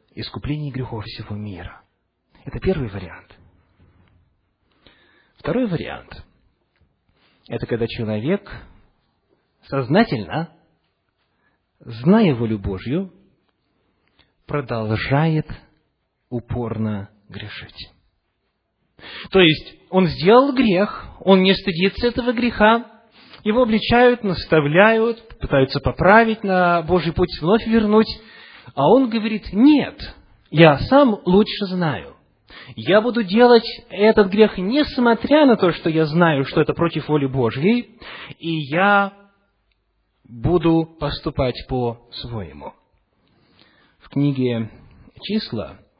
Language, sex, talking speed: English, male, 95 wpm